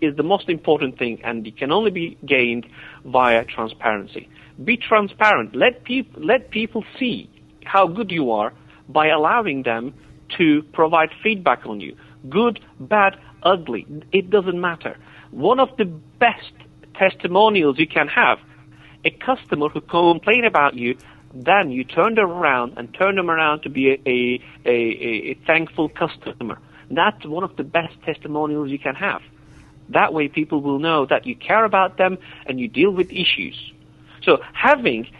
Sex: male